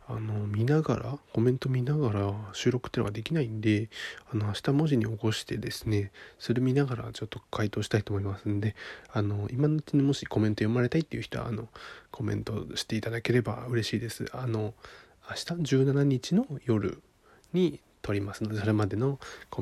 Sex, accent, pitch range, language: male, native, 110-160 Hz, Japanese